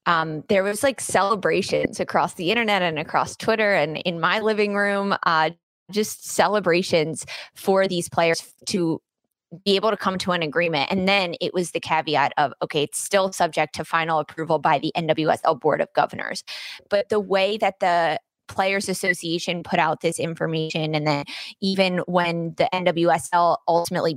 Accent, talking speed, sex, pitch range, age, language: American, 170 wpm, female, 160-195 Hz, 20-39, English